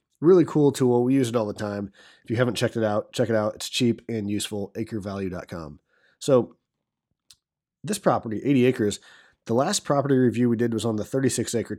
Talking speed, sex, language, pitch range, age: 195 wpm, male, English, 105-125 Hz, 30-49